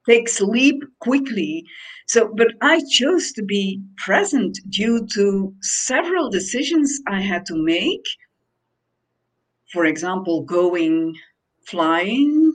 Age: 50-69